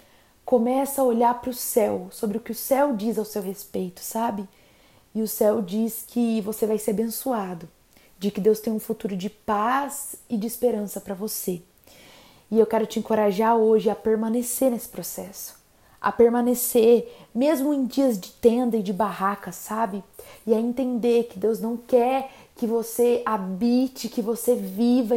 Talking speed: 170 wpm